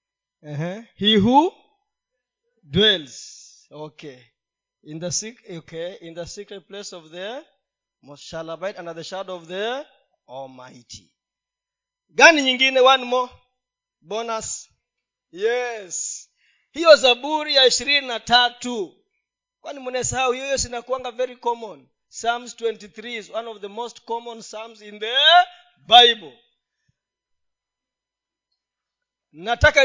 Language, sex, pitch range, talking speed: Swahili, male, 205-270 Hz, 110 wpm